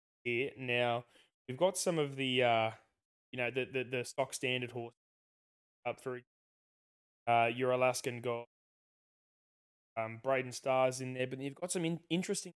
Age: 20-39